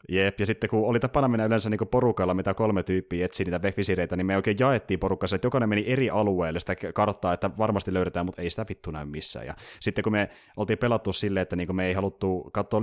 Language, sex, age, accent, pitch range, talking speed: Finnish, male, 30-49, native, 90-110 Hz, 230 wpm